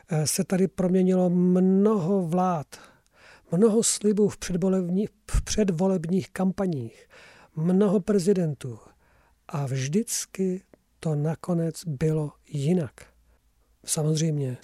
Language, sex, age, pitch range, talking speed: Czech, male, 50-69, 150-190 Hz, 80 wpm